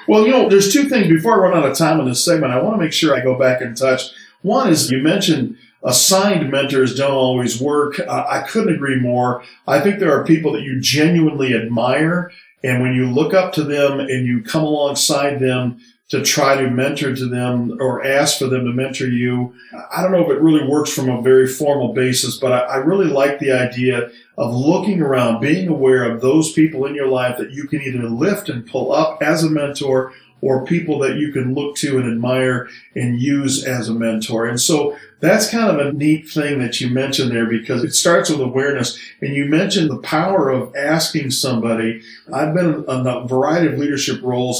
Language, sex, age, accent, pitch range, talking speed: English, male, 40-59, American, 125-155 Hz, 215 wpm